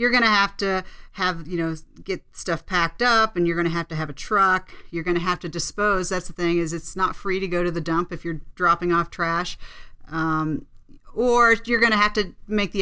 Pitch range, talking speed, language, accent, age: 170-205 Hz, 230 wpm, English, American, 40-59